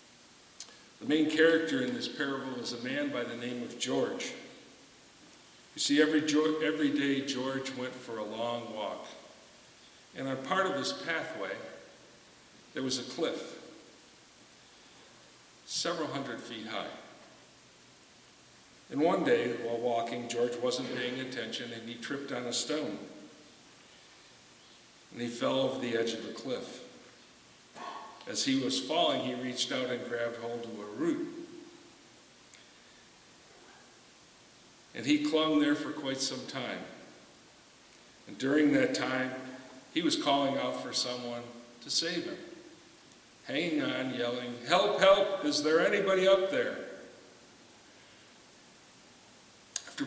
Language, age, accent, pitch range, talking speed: English, 50-69, American, 120-155 Hz, 130 wpm